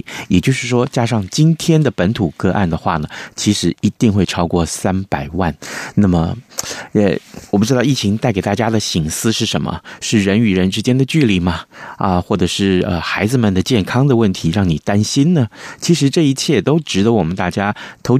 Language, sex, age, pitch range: Chinese, male, 30-49, 90-125 Hz